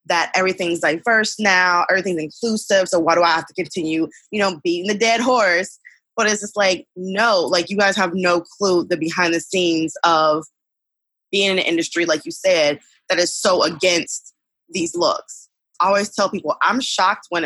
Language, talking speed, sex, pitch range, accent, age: English, 190 wpm, female, 170-210 Hz, American, 20-39